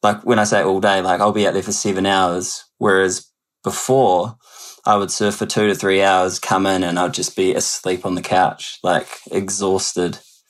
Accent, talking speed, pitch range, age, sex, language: Australian, 205 wpm, 95-110 Hz, 20-39, male, English